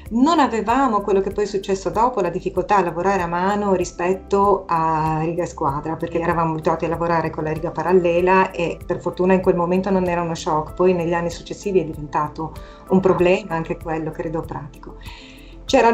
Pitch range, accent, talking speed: 170-210 Hz, native, 190 wpm